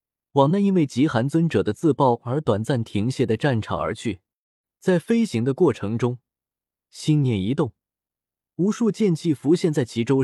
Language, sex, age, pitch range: Chinese, male, 20-39, 120-175 Hz